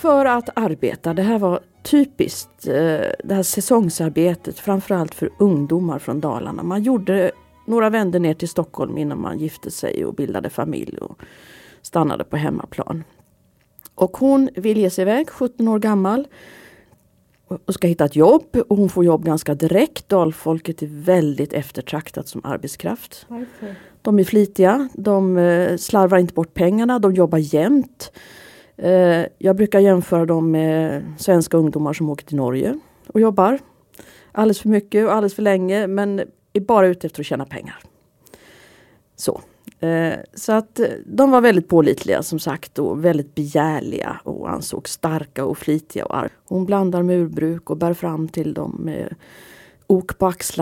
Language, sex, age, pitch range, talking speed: Swedish, female, 40-59, 160-205 Hz, 150 wpm